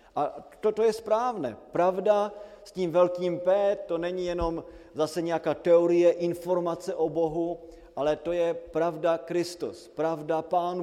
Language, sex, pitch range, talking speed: Slovak, male, 150-180 Hz, 145 wpm